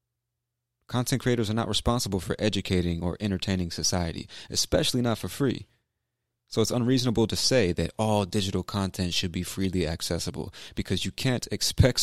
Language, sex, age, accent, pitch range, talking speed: English, male, 30-49, American, 95-120 Hz, 155 wpm